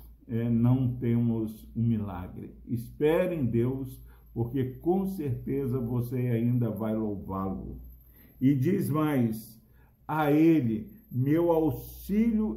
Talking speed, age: 100 wpm, 60-79